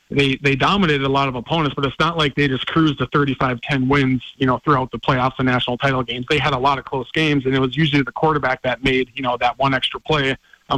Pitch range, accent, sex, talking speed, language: 130-150 Hz, American, male, 280 wpm, English